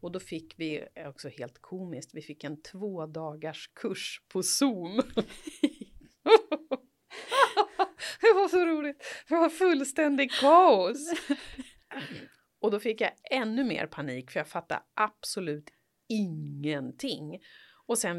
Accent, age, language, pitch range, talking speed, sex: Swedish, 30-49, English, 140-225 Hz, 120 wpm, female